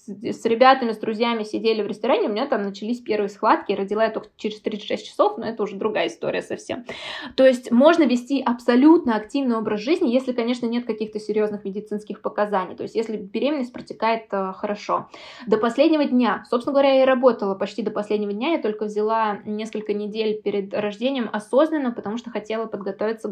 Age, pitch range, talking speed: 20-39, 210-265 Hz, 180 wpm